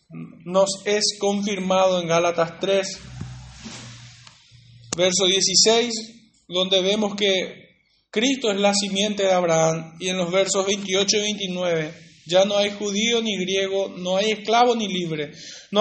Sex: male